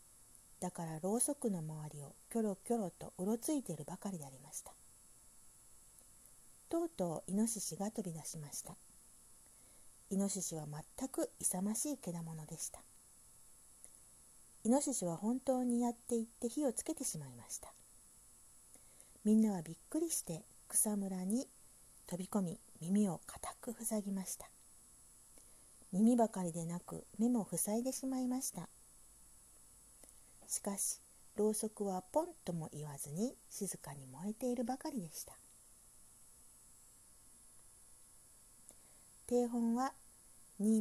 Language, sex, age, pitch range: Japanese, female, 40-59, 155-235 Hz